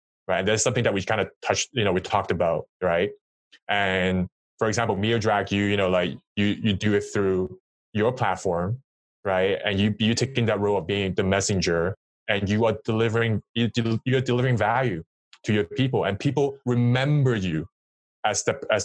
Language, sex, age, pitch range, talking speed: English, male, 20-39, 95-120 Hz, 195 wpm